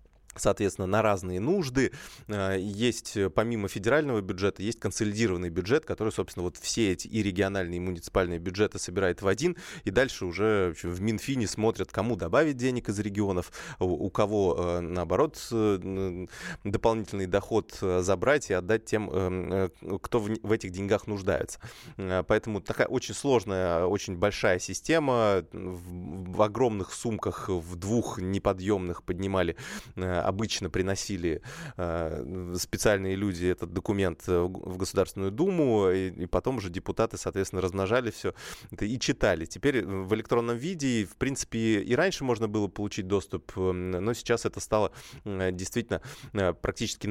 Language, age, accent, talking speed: Russian, 20-39, native, 125 wpm